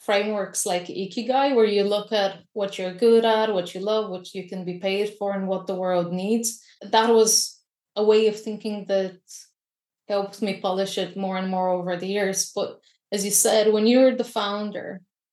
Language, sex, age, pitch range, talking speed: English, female, 20-39, 190-215 Hz, 195 wpm